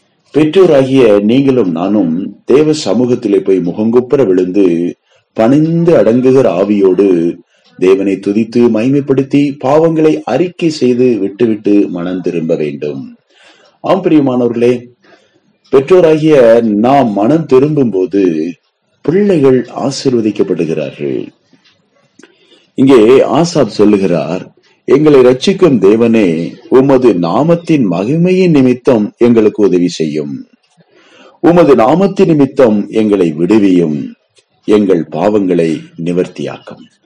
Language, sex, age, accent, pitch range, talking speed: Tamil, male, 30-49, native, 100-150 Hz, 75 wpm